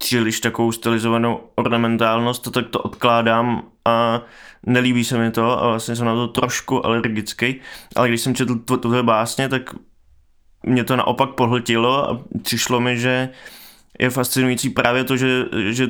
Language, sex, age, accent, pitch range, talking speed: Czech, male, 20-39, native, 115-125 Hz, 155 wpm